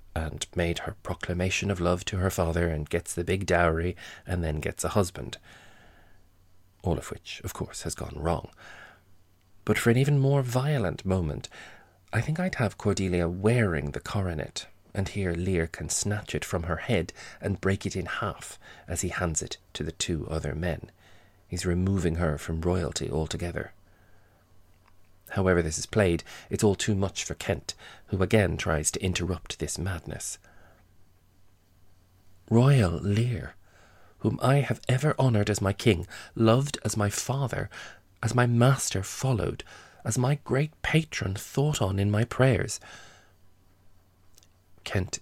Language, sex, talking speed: English, male, 155 wpm